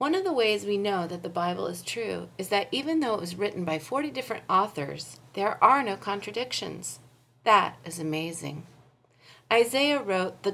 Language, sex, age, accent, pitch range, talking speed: English, female, 40-59, American, 160-235 Hz, 180 wpm